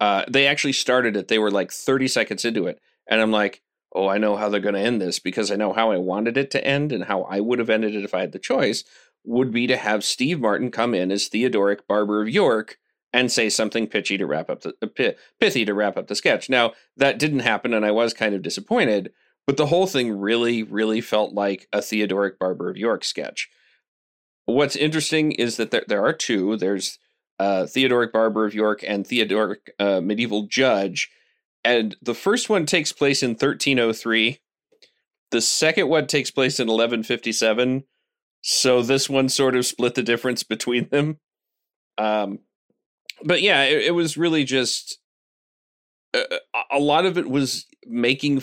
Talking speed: 195 wpm